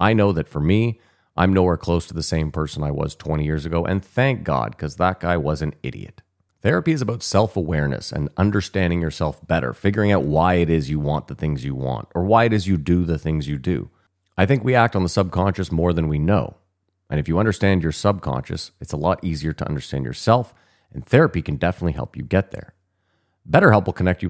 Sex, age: male, 30-49